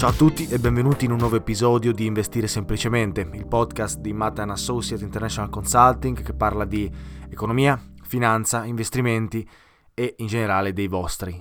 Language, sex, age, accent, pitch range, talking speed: Italian, male, 20-39, native, 100-125 Hz, 160 wpm